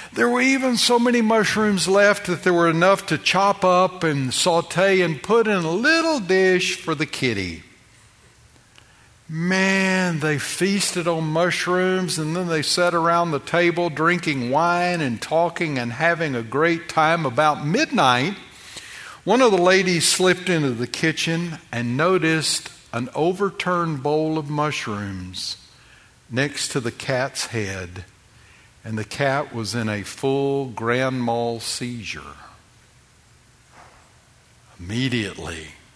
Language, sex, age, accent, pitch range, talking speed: English, male, 60-79, American, 115-170 Hz, 130 wpm